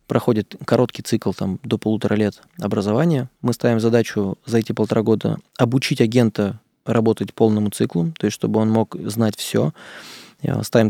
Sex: male